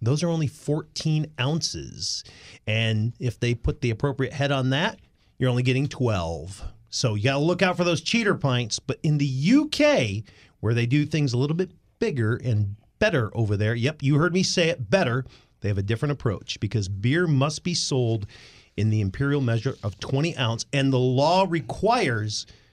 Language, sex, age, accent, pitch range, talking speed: English, male, 40-59, American, 110-150 Hz, 190 wpm